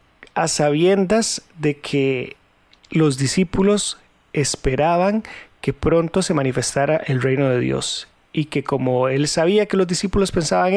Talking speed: 135 wpm